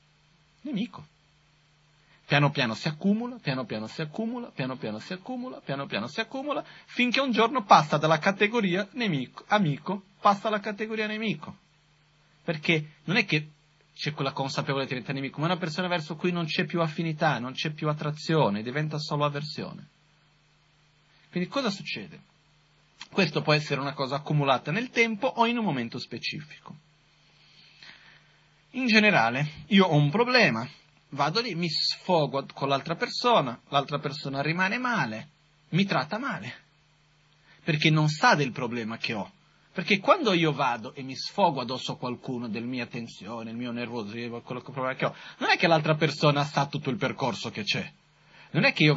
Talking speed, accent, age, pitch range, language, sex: 165 wpm, native, 30-49, 140-185 Hz, Italian, male